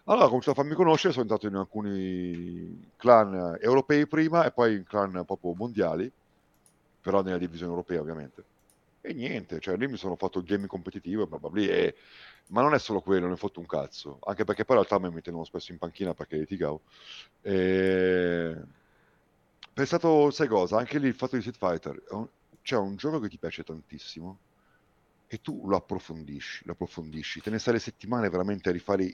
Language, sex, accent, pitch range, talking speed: Italian, male, native, 85-110 Hz, 185 wpm